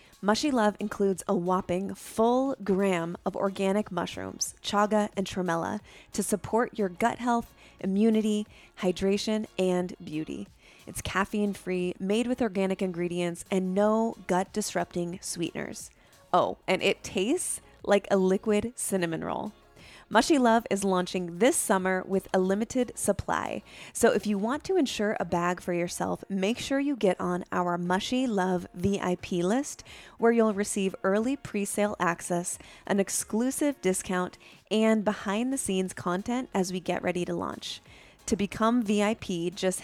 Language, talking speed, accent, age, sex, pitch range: English, 140 wpm, American, 20-39, female, 180-215 Hz